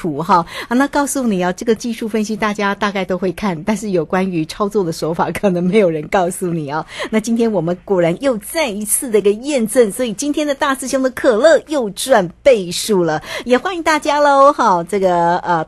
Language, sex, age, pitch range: Chinese, female, 50-69, 180-255 Hz